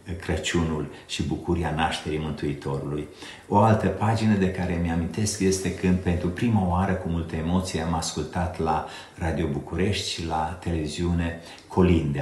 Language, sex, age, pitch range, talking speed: Romanian, male, 50-69, 80-95 Hz, 135 wpm